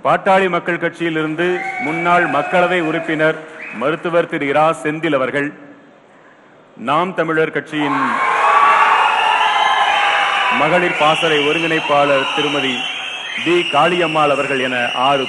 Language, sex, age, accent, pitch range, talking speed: Tamil, male, 40-59, native, 145-185 Hz, 95 wpm